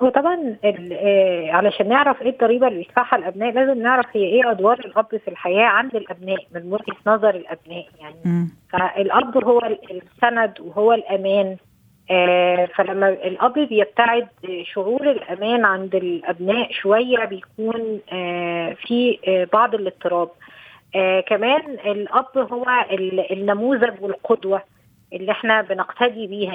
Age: 20-39